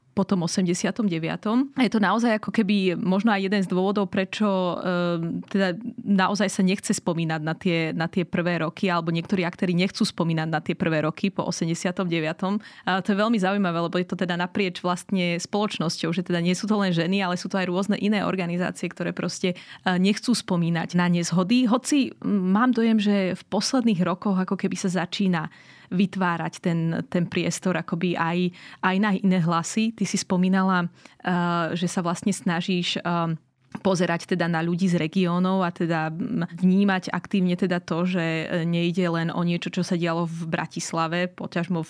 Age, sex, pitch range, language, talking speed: 20-39, female, 175-205 Hz, Slovak, 170 wpm